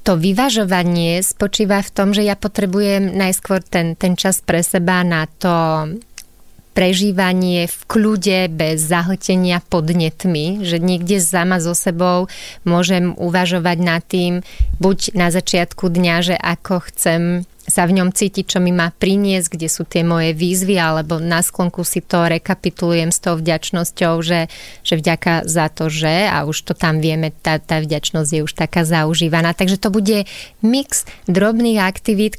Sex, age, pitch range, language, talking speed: female, 30-49, 170-200 Hz, Slovak, 155 wpm